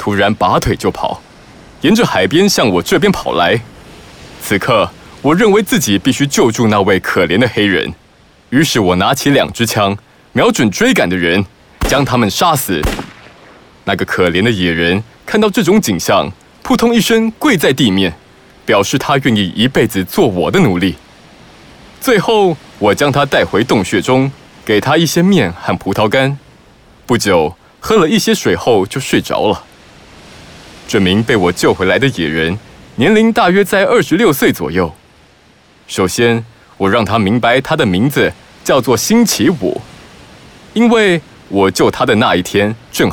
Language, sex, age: Chinese, male, 20-39